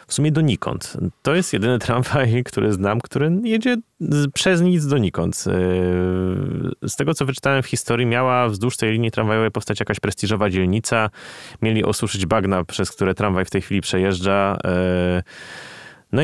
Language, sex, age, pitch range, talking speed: Polish, male, 20-39, 90-120 Hz, 150 wpm